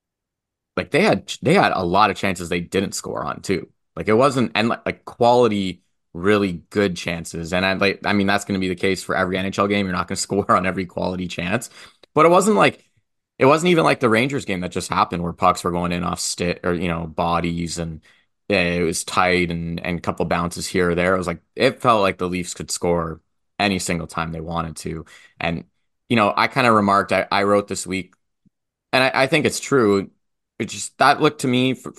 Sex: male